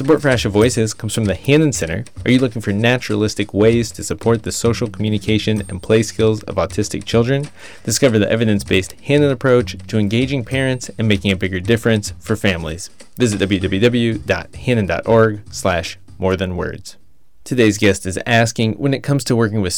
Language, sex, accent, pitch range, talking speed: English, male, American, 100-120 Hz, 175 wpm